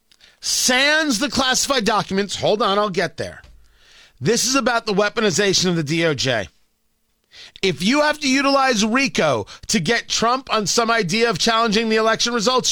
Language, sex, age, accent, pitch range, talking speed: English, male, 40-59, American, 210-265 Hz, 160 wpm